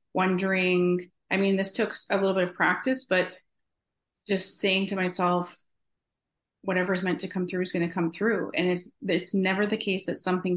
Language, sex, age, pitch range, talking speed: English, female, 30-49, 175-185 Hz, 185 wpm